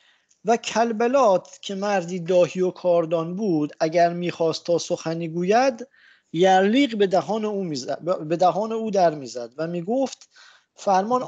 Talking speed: 135 wpm